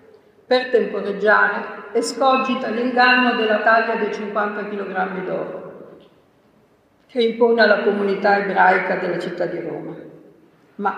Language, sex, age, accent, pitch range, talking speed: Italian, female, 50-69, native, 190-245 Hz, 115 wpm